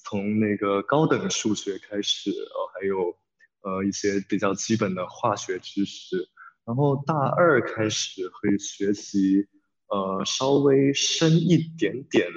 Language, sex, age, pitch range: Chinese, male, 20-39, 95-115 Hz